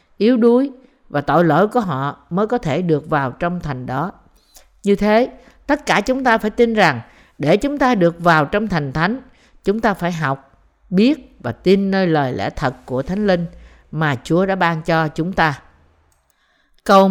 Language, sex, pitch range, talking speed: Vietnamese, female, 165-225 Hz, 190 wpm